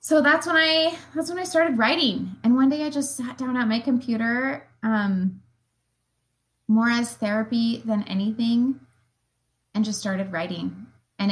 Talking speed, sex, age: 160 wpm, female, 20-39